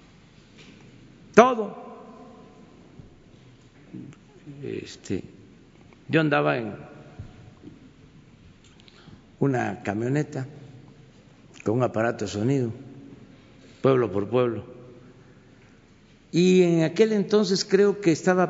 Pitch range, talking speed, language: 130-185 Hz, 70 wpm, Spanish